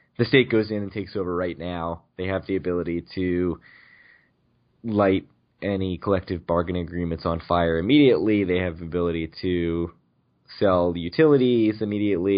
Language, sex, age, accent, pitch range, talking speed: English, male, 20-39, American, 90-115 Hz, 150 wpm